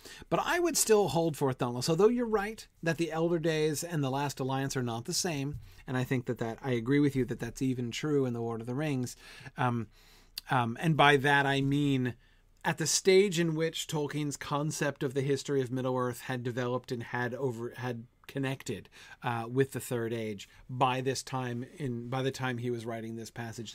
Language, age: English, 40-59